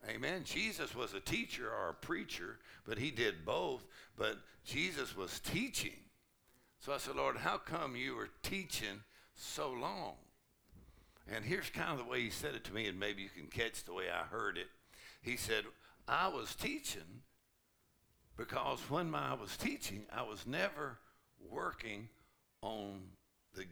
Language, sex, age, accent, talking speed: English, male, 60-79, American, 160 wpm